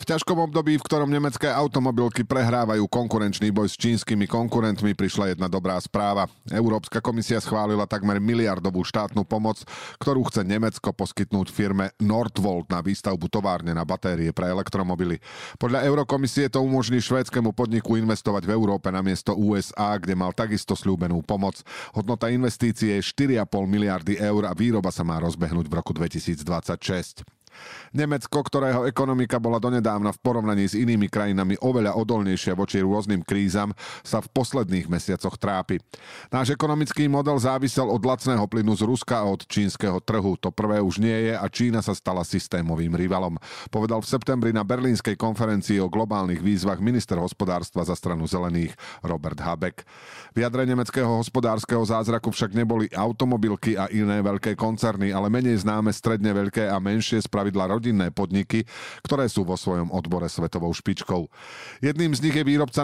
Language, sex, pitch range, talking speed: Slovak, male, 95-120 Hz, 155 wpm